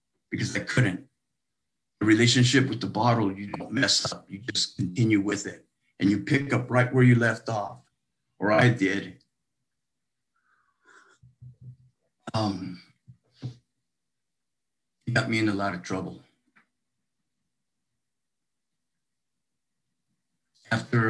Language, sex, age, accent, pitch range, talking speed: English, male, 50-69, American, 100-125 Hz, 110 wpm